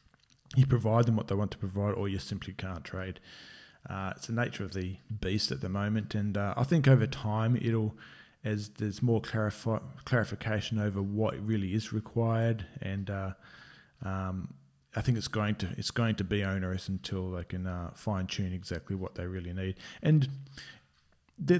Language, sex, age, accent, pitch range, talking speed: English, male, 20-39, Australian, 95-115 Hz, 180 wpm